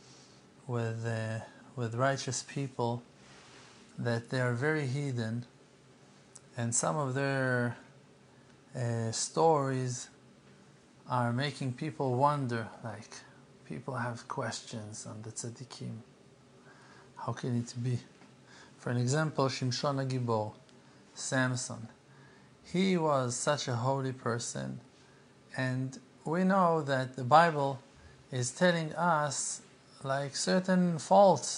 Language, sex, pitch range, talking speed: English, male, 120-140 Hz, 105 wpm